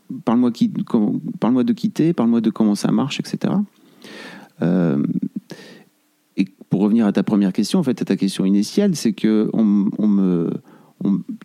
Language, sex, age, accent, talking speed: French, male, 40-59, French, 170 wpm